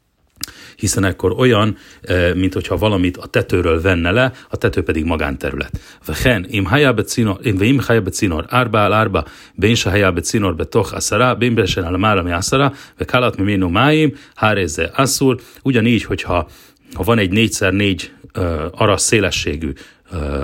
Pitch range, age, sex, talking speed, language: 85-115 Hz, 40-59, male, 125 wpm, Hungarian